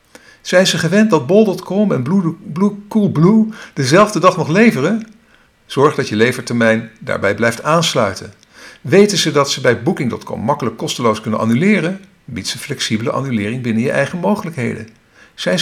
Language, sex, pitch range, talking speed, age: Dutch, male, 110-175 Hz, 140 wpm, 50-69